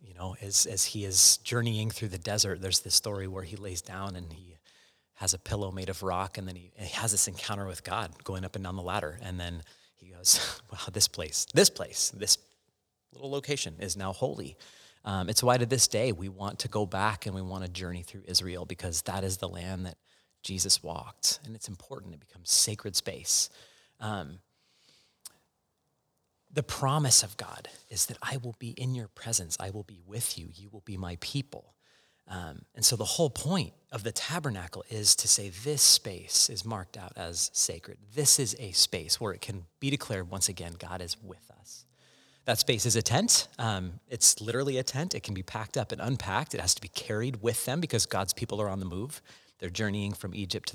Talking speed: 215 wpm